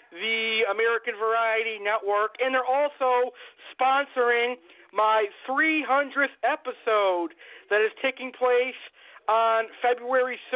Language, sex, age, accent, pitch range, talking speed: English, male, 50-69, American, 220-265 Hz, 95 wpm